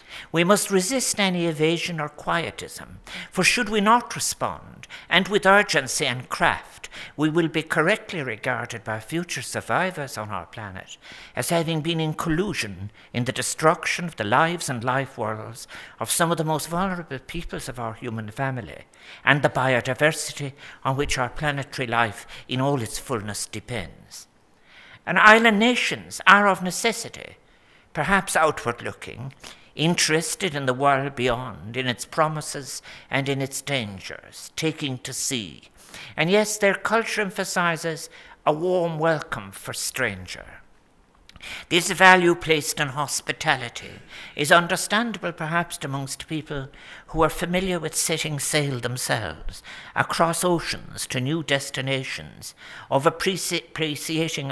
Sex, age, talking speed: male, 60-79, 135 wpm